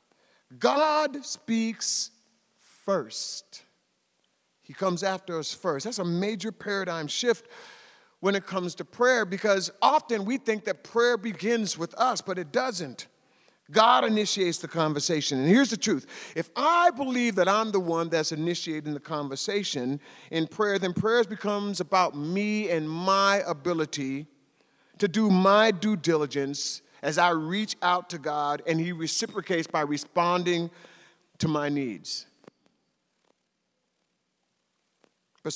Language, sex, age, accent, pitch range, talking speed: English, male, 50-69, American, 160-210 Hz, 135 wpm